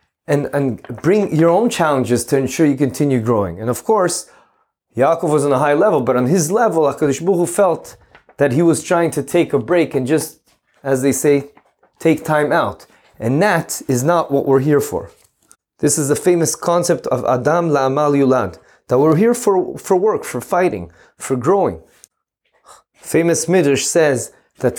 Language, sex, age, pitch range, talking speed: English, male, 30-49, 130-170 Hz, 180 wpm